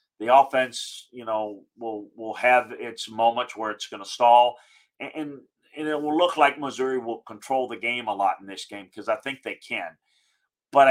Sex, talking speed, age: male, 200 wpm, 50-69